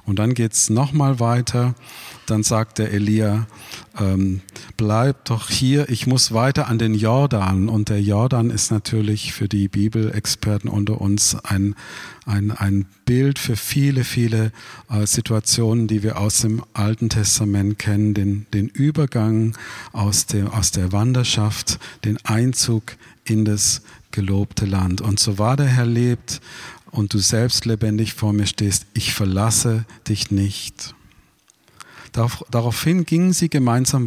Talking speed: 145 wpm